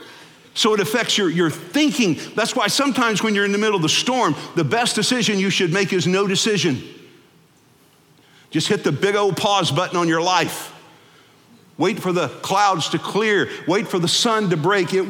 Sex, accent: male, American